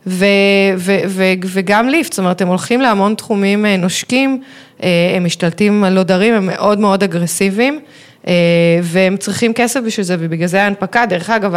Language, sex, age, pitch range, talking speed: Hebrew, female, 20-39, 170-205 Hz, 155 wpm